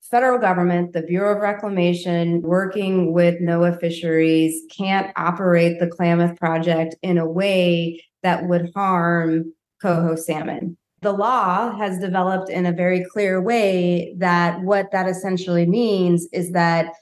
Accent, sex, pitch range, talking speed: American, female, 175-195 Hz, 140 wpm